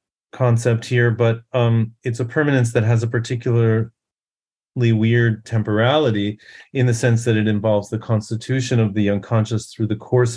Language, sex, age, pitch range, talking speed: English, male, 40-59, 105-120 Hz, 155 wpm